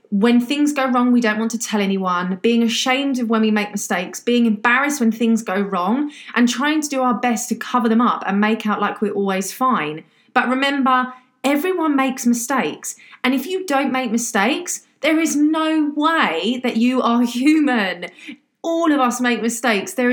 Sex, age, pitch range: female, 30-49, 210-265 Hz